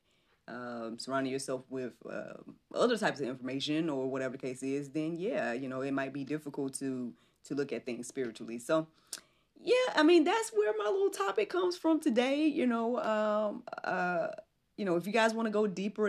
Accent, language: American, English